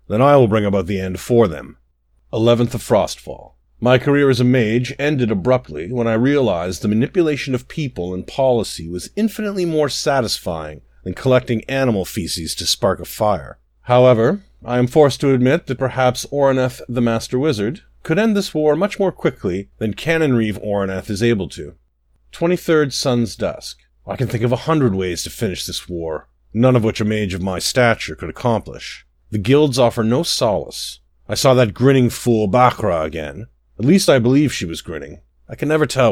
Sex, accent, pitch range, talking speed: male, American, 95-130 Hz, 185 wpm